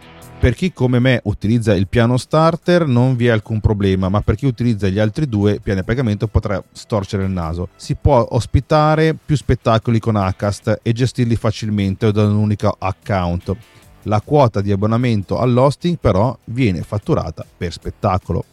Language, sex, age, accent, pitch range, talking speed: Italian, male, 30-49, native, 95-120 Hz, 170 wpm